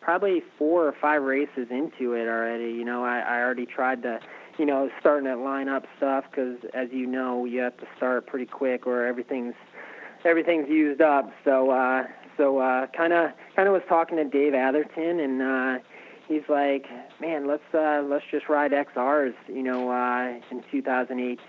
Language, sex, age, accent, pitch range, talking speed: English, male, 20-39, American, 125-140 Hz, 185 wpm